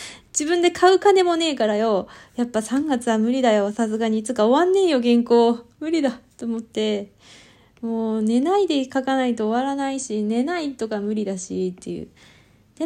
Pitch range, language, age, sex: 185-270 Hz, Japanese, 20-39, female